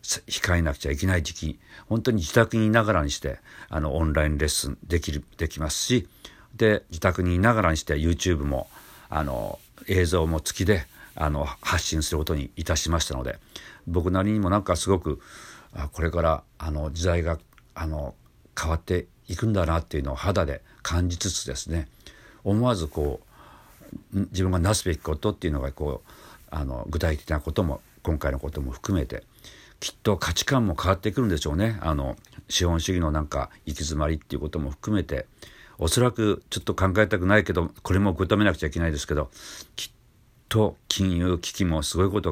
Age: 50-69